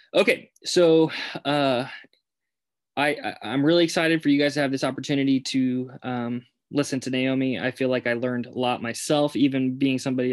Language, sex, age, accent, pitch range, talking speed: English, male, 20-39, American, 115-130 Hz, 180 wpm